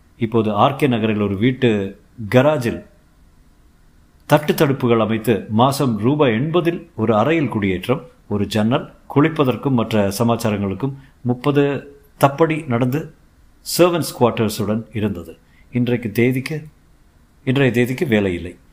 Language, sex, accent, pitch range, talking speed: Tamil, male, native, 100-140 Hz, 95 wpm